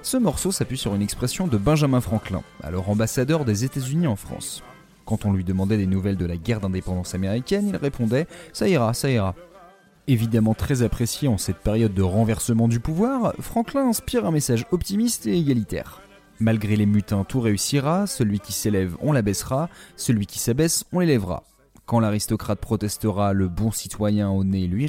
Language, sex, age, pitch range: French, male, 30-49, 100-145 Hz